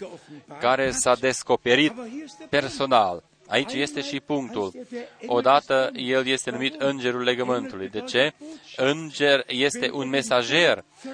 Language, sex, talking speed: Romanian, male, 110 wpm